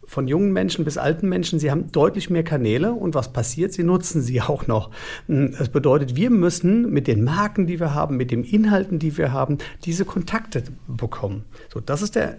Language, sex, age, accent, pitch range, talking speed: German, male, 50-69, German, 125-180 Hz, 205 wpm